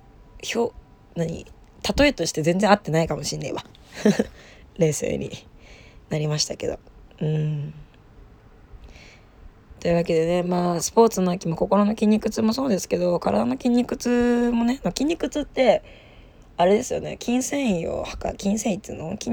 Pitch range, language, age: 155-215 Hz, Japanese, 20-39